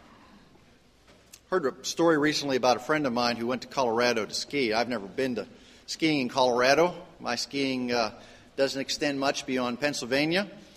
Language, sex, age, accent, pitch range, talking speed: English, male, 40-59, American, 140-195 Hz, 165 wpm